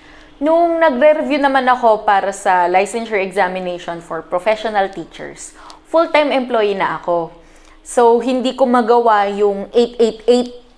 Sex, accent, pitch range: female, Filipino, 185-255 Hz